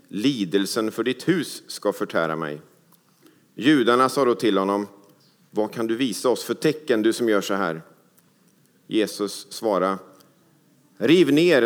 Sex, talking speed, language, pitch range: male, 145 wpm, English, 95-150 Hz